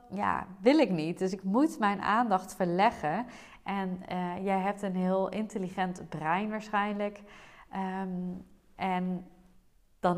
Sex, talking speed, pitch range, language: female, 125 wpm, 175-220 Hz, Dutch